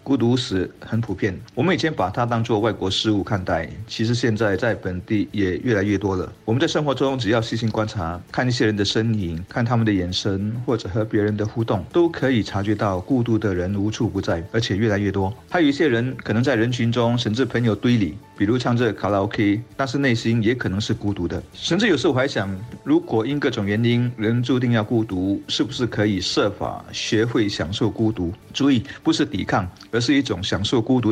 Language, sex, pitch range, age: Chinese, male, 100-120 Hz, 50-69